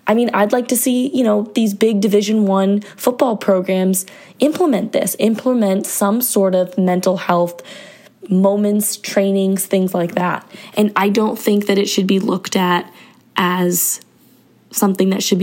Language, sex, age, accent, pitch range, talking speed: English, female, 20-39, American, 190-215 Hz, 160 wpm